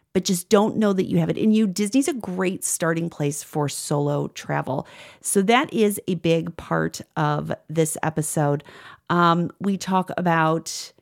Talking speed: 170 wpm